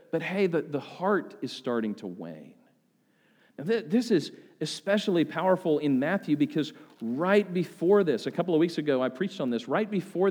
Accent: American